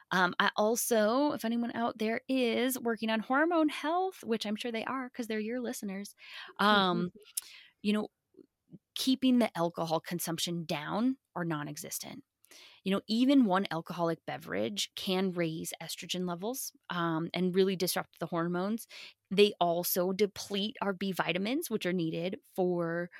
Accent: American